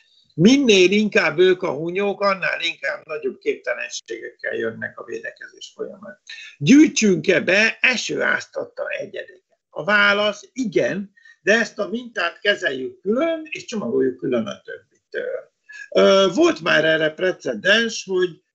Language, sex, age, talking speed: Hungarian, male, 60-79, 115 wpm